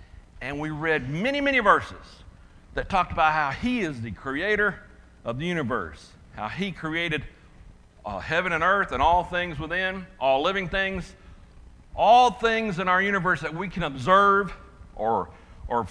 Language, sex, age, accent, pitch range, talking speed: English, male, 60-79, American, 150-210 Hz, 160 wpm